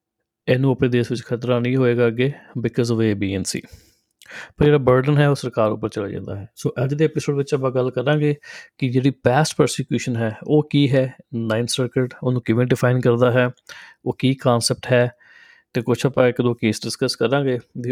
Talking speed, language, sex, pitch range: 190 wpm, Punjabi, male, 115-140 Hz